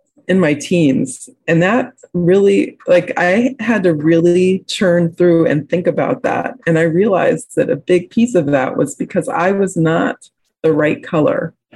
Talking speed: 175 wpm